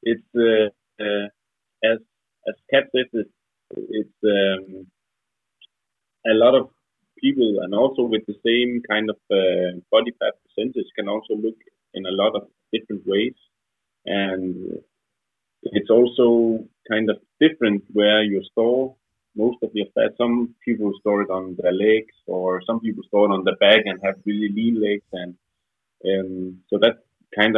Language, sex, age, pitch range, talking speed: Danish, male, 30-49, 95-115 Hz, 155 wpm